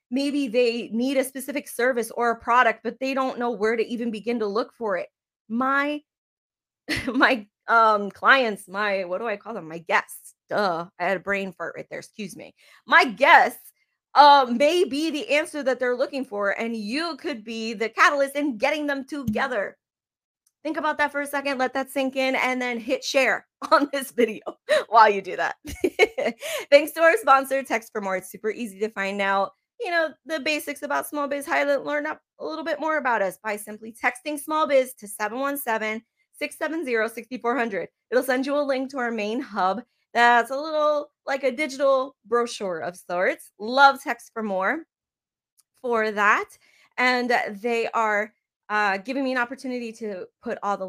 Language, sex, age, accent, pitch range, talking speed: English, female, 20-39, American, 215-280 Hz, 185 wpm